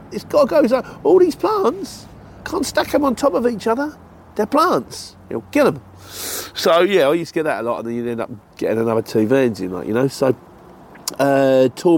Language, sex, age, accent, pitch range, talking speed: English, male, 40-59, British, 125-175 Hz, 240 wpm